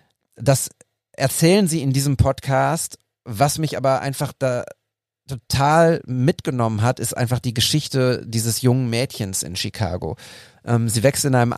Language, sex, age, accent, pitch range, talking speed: German, male, 40-59, German, 115-140 Hz, 145 wpm